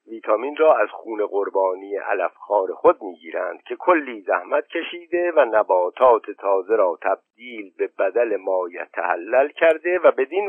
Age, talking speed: 50-69, 135 wpm